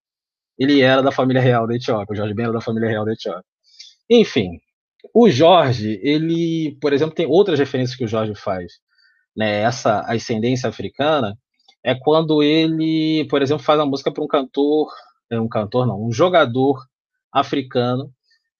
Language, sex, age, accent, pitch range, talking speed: Portuguese, male, 20-39, Brazilian, 115-165 Hz, 160 wpm